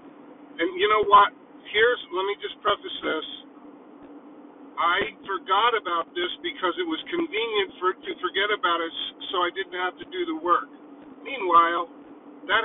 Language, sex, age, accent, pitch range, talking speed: English, male, 50-69, American, 185-310 Hz, 160 wpm